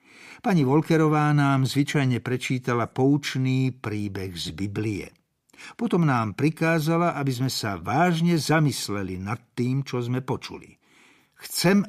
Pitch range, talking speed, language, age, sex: 105-165 Hz, 115 wpm, Slovak, 60-79, male